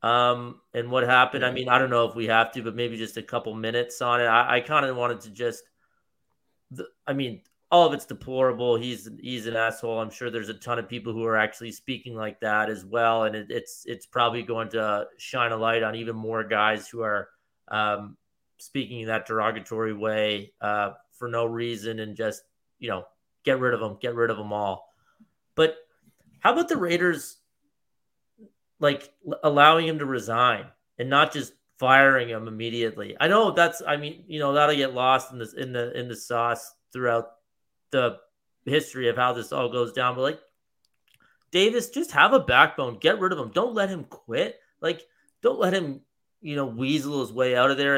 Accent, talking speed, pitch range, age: American, 200 wpm, 115-145 Hz, 30-49